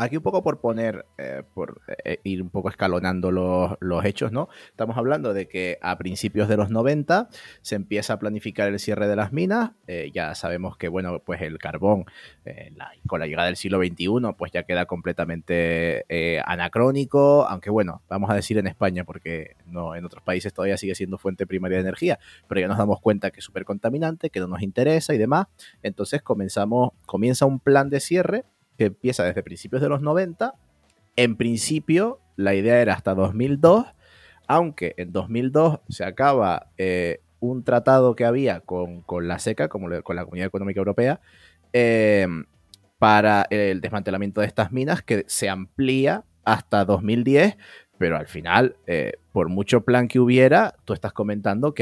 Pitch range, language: 95-125 Hz, Spanish